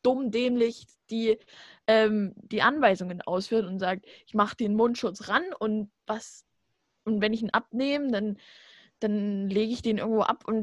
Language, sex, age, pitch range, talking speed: German, female, 20-39, 200-235 Hz, 165 wpm